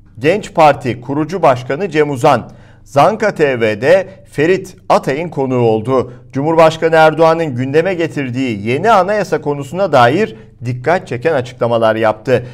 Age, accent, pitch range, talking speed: 50-69, native, 120-165 Hz, 115 wpm